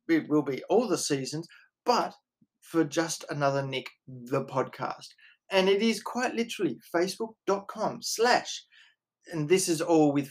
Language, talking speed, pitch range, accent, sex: English, 145 wpm, 155-210 Hz, Australian, male